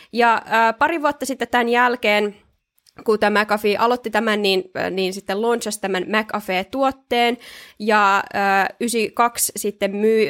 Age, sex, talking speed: 20-39, female, 135 wpm